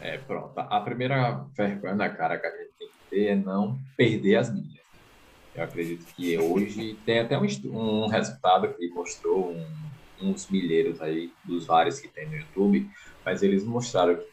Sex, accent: male, Brazilian